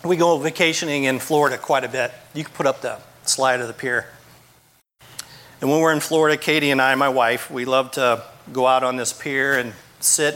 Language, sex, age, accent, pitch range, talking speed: English, male, 40-59, American, 130-160 Hz, 215 wpm